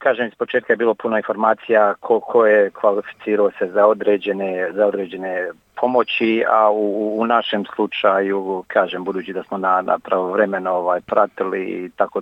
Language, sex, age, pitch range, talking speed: Croatian, male, 40-59, 90-110 Hz, 155 wpm